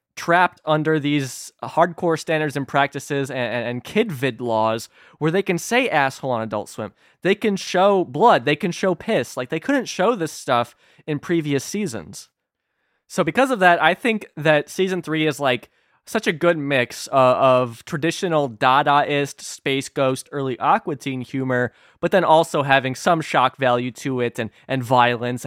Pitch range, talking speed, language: 125-165 Hz, 175 wpm, English